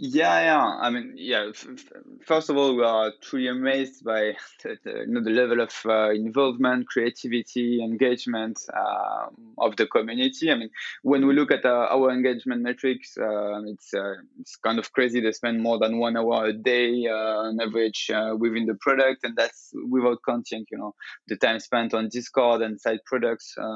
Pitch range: 110-135 Hz